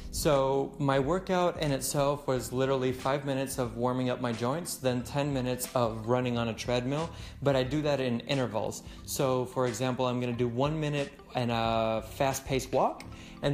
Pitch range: 120-135 Hz